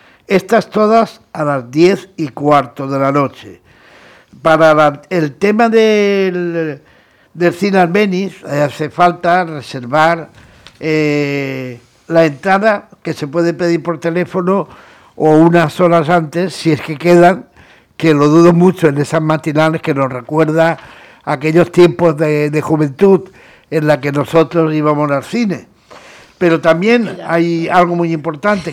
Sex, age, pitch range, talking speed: male, 60-79, 145-175 Hz, 140 wpm